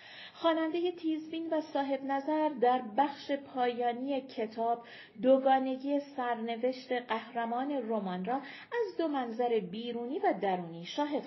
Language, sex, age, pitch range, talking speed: Persian, female, 40-59, 210-265 Hz, 110 wpm